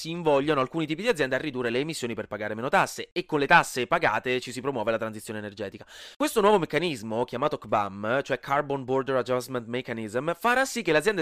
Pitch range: 125-190 Hz